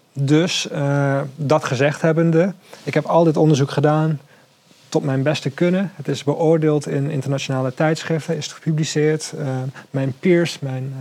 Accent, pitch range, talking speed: Dutch, 135-155 Hz, 155 wpm